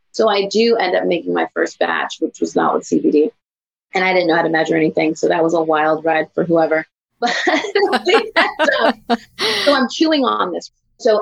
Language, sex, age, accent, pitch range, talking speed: English, female, 30-49, American, 175-255 Hz, 200 wpm